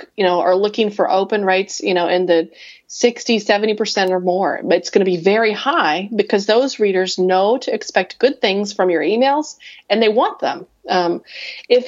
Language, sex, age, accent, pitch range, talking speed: English, female, 30-49, American, 180-220 Hz, 195 wpm